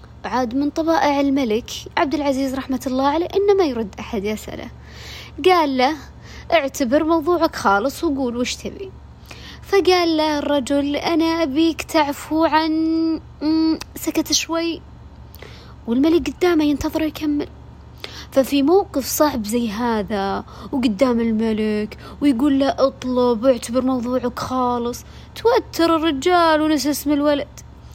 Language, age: Arabic, 20-39